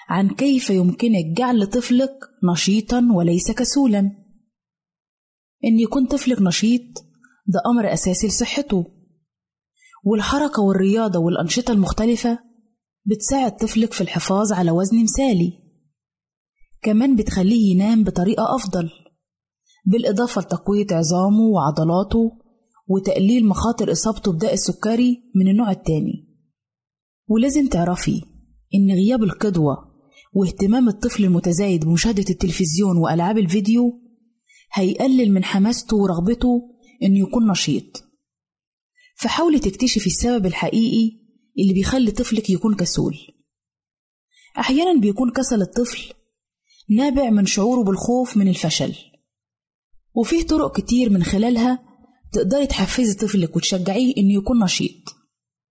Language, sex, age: Arabic, female, 20-39